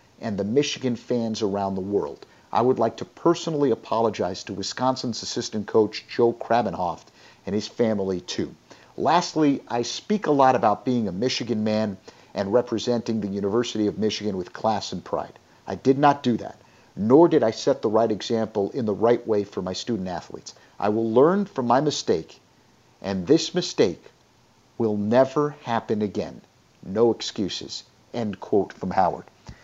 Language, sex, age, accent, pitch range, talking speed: English, male, 50-69, American, 105-130 Hz, 165 wpm